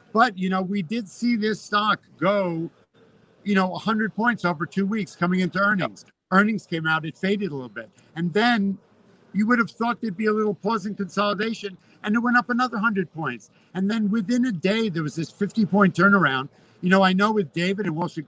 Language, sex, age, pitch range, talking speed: English, male, 50-69, 170-200 Hz, 215 wpm